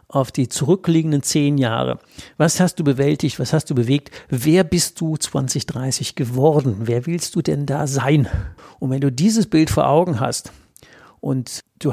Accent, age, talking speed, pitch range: German, 60-79, 170 wpm, 130-155 Hz